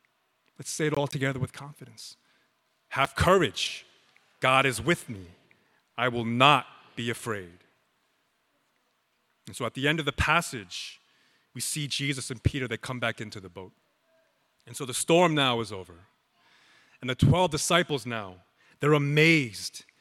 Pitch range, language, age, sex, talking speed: 115-155 Hz, English, 30-49, male, 155 wpm